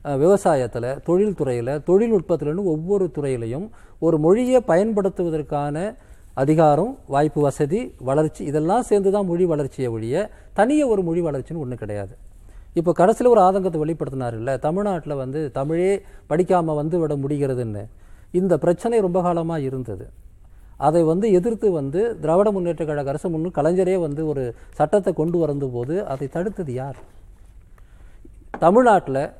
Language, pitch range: Tamil, 135-195 Hz